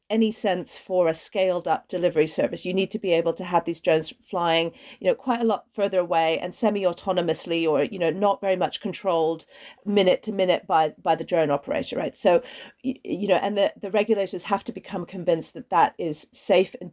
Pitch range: 175-225 Hz